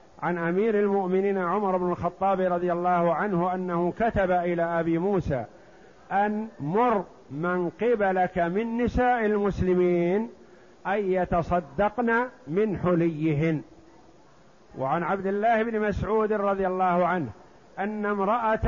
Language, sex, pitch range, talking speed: Arabic, male, 160-200 Hz, 110 wpm